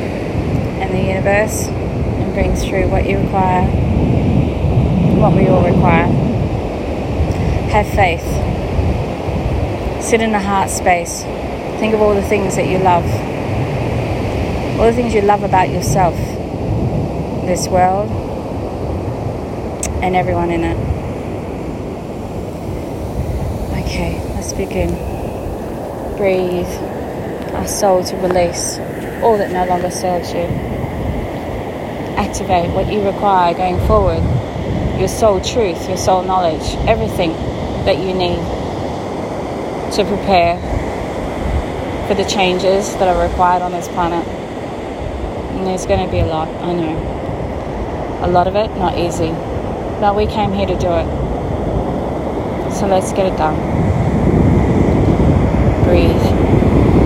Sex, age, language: female, 20-39, English